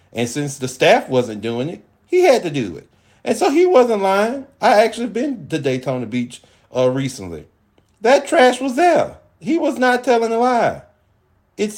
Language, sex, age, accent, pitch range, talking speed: English, male, 40-59, American, 130-195 Hz, 185 wpm